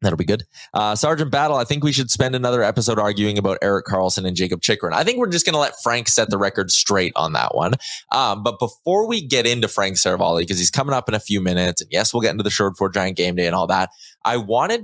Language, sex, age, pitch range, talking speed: English, male, 20-39, 95-125 Hz, 270 wpm